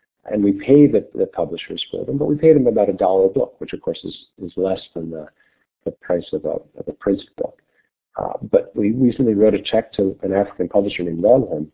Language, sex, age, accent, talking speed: English, male, 50-69, American, 230 wpm